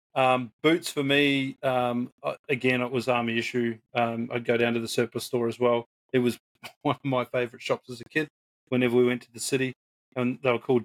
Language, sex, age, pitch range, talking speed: English, male, 30-49, 115-125 Hz, 220 wpm